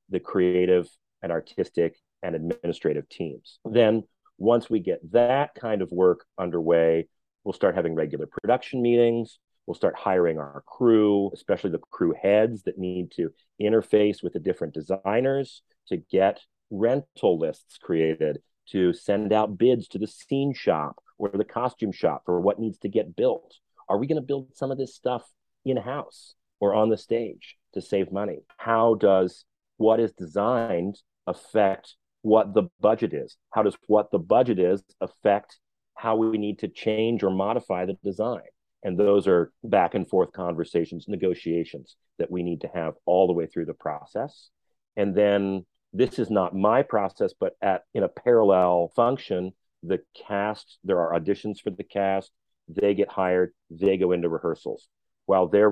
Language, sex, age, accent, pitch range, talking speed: English, male, 40-59, American, 90-115 Hz, 165 wpm